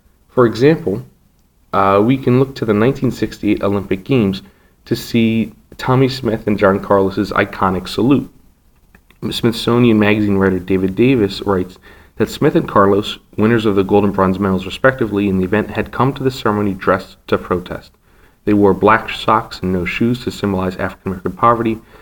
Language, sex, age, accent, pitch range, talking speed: English, male, 30-49, American, 95-115 Hz, 165 wpm